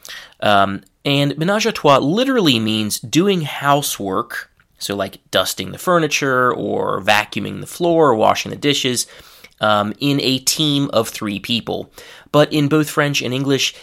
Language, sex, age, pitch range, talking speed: English, male, 20-39, 105-140 Hz, 150 wpm